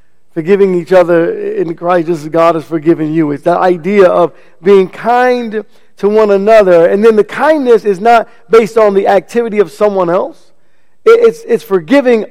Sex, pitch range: male, 180-235 Hz